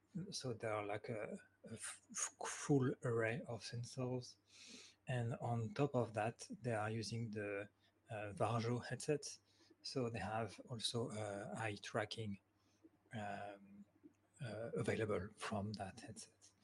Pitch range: 105-125 Hz